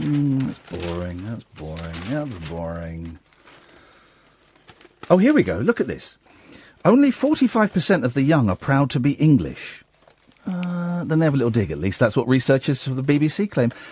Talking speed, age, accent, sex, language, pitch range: 175 wpm, 40-59, British, male, English, 100-155 Hz